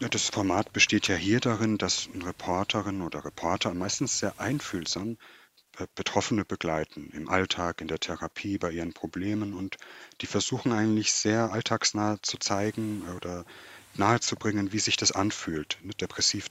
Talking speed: 140 wpm